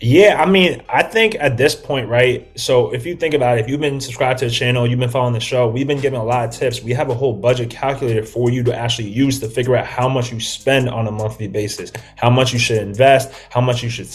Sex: male